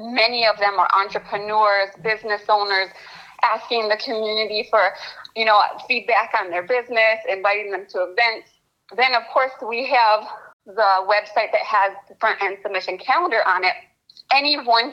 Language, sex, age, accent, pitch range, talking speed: English, female, 30-49, American, 200-235 Hz, 155 wpm